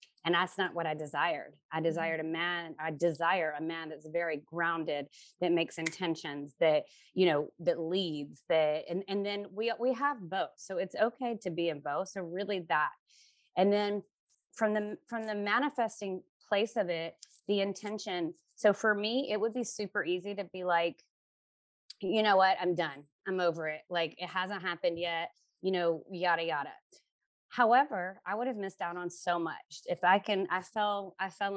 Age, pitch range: 30-49, 165-200 Hz